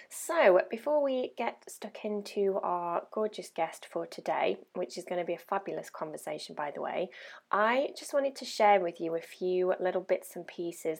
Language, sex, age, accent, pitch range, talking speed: English, female, 20-39, British, 170-205 Hz, 190 wpm